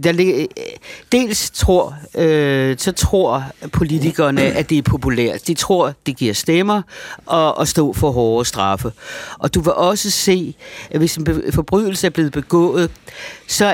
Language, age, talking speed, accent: Danish, 60-79, 155 wpm, native